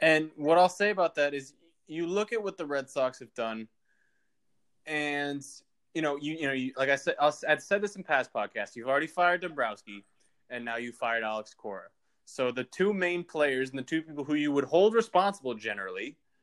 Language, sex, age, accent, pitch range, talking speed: English, male, 20-39, American, 125-170 Hz, 210 wpm